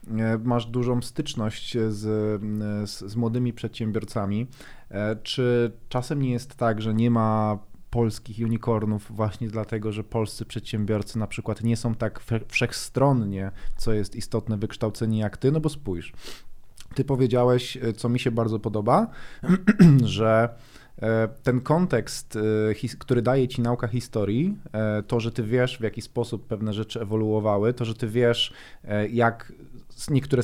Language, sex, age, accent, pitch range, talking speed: Polish, male, 20-39, native, 110-125 Hz, 135 wpm